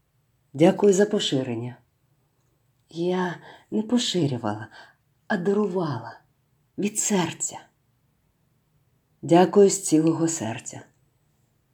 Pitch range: 135-180 Hz